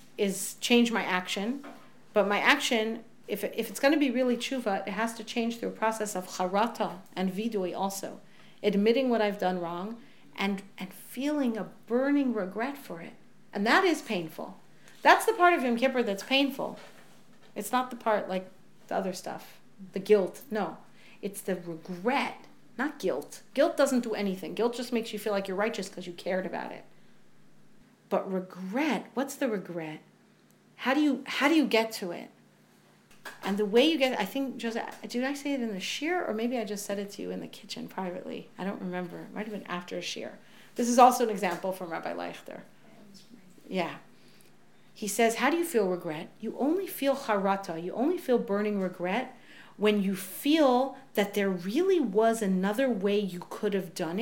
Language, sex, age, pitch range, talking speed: English, female, 40-59, 195-250 Hz, 195 wpm